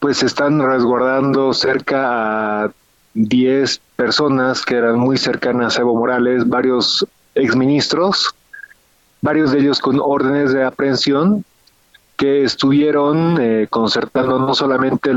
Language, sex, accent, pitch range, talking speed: Spanish, male, Mexican, 125-145 Hz, 115 wpm